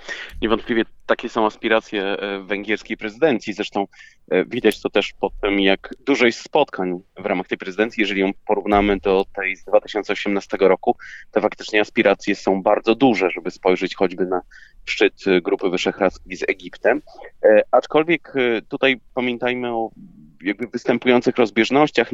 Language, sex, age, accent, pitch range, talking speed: Polish, male, 30-49, native, 95-120 Hz, 135 wpm